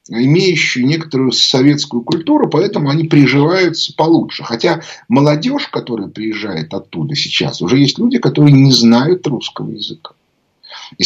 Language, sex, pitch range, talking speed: Russian, male, 125-165 Hz, 125 wpm